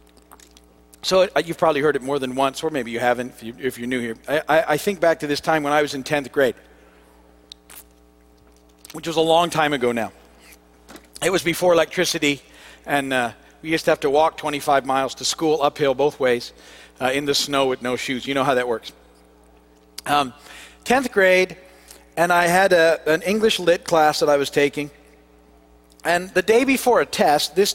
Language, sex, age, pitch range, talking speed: English, male, 50-69, 135-205 Hz, 195 wpm